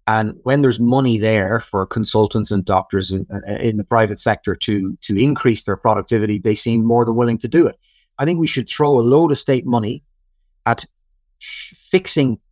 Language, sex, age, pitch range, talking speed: English, male, 30-49, 100-120 Hz, 185 wpm